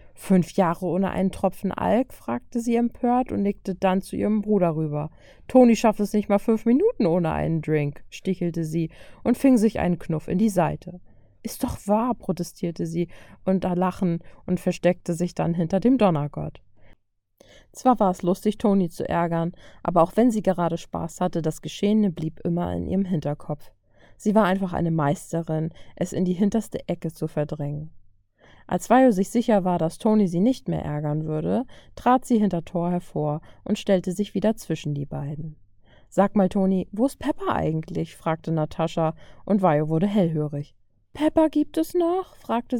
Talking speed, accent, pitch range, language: 175 wpm, German, 160-215 Hz, German